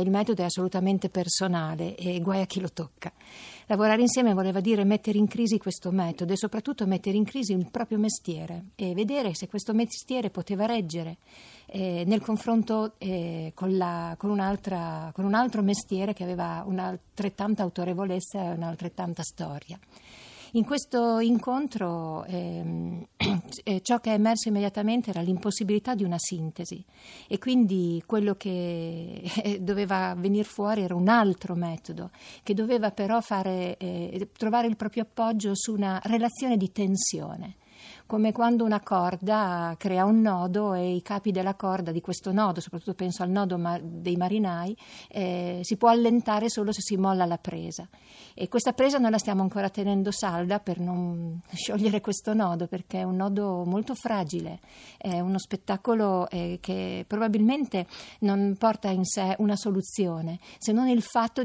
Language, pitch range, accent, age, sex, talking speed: Italian, 180-215 Hz, native, 50-69, female, 155 wpm